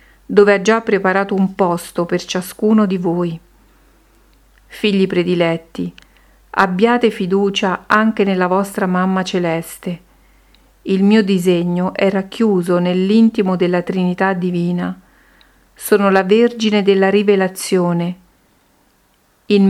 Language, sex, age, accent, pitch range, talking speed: Italian, female, 50-69, native, 180-205 Hz, 105 wpm